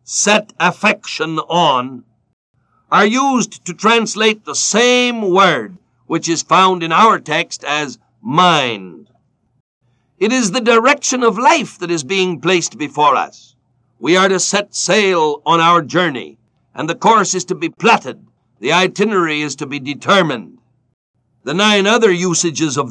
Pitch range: 165-210 Hz